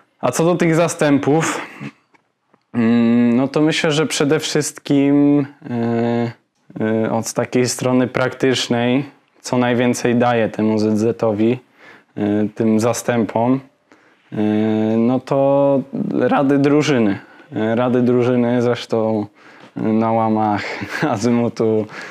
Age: 10-29